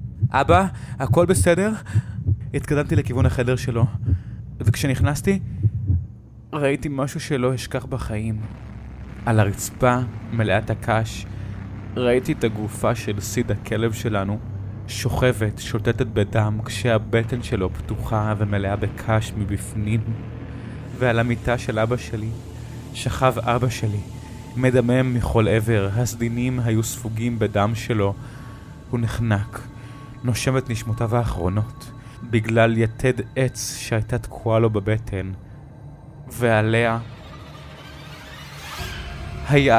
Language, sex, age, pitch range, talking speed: Hebrew, male, 20-39, 105-125 Hz, 95 wpm